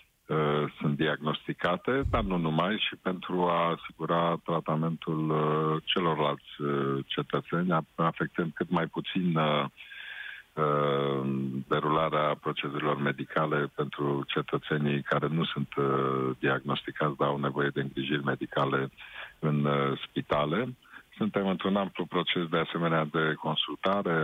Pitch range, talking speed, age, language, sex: 70-85 Hz, 100 wpm, 50-69, Romanian, male